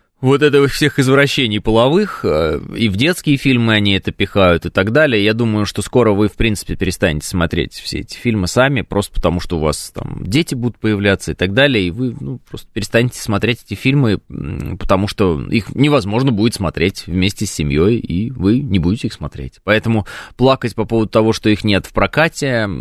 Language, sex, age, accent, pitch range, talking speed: Russian, male, 20-39, native, 90-120 Hz, 195 wpm